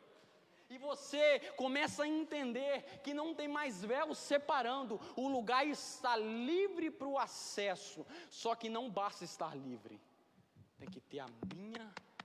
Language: Portuguese